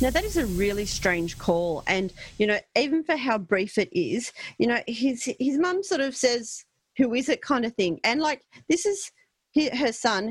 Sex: female